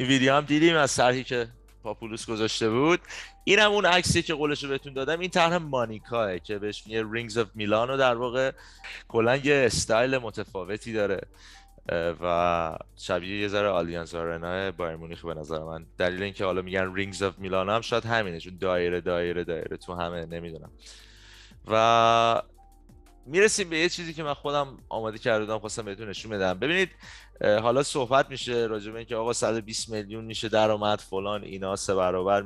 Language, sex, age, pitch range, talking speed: Persian, male, 30-49, 90-120 Hz, 165 wpm